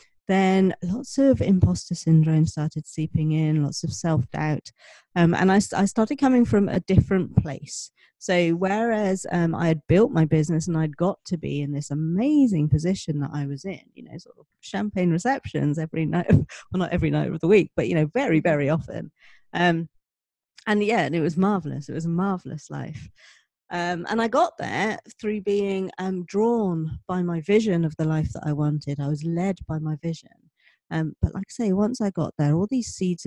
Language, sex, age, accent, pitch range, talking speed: English, female, 40-59, British, 155-195 Hz, 195 wpm